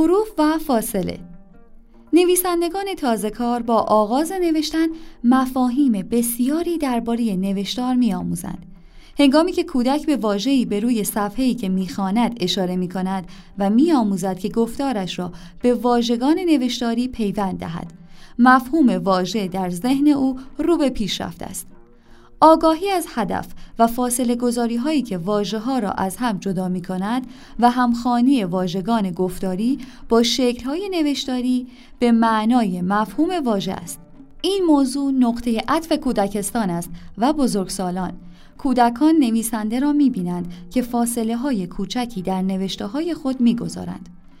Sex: female